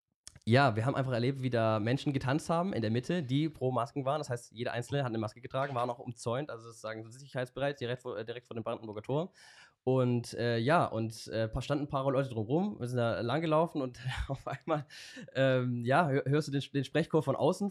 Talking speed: 230 wpm